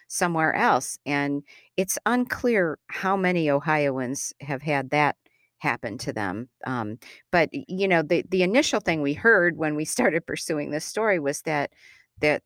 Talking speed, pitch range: 160 wpm, 130-165 Hz